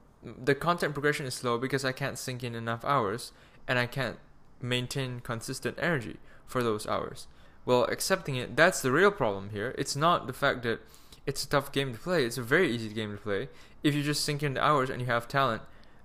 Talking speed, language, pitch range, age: 215 wpm, English, 115-145 Hz, 10-29